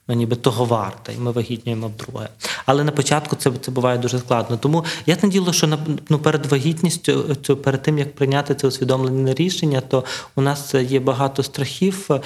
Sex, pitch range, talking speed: male, 125-150 Hz, 175 wpm